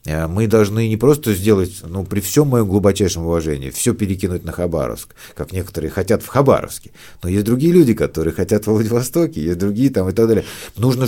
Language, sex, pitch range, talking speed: Russian, male, 90-130 Hz, 190 wpm